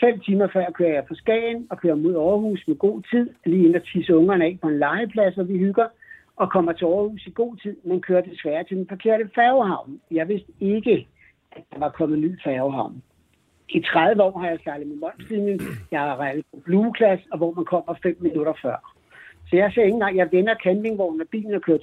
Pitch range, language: 170-205 Hz, Danish